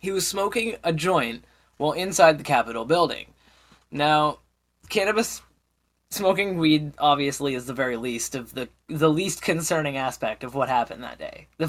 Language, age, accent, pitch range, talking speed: English, 10-29, American, 140-180 Hz, 160 wpm